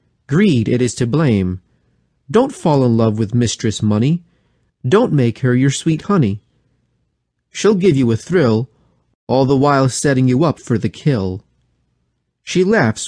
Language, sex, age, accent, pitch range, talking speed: English, male, 40-59, American, 110-150 Hz, 155 wpm